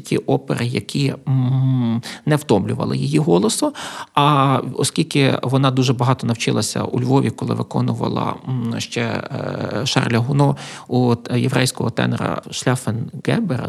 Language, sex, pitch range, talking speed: Ukrainian, male, 115-135 Hz, 105 wpm